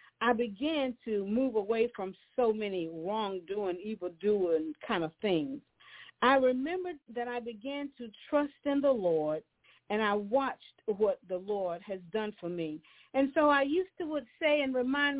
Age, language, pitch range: 50-69, English, 190-265 Hz